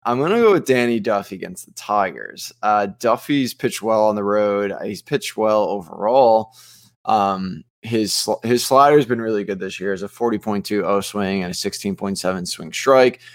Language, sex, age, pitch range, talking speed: English, male, 20-39, 100-125 Hz, 185 wpm